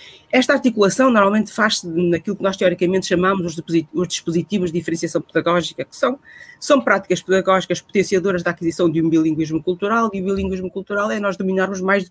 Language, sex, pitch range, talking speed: Portuguese, female, 175-225 Hz, 175 wpm